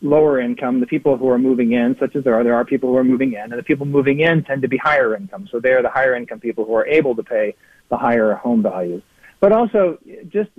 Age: 40-59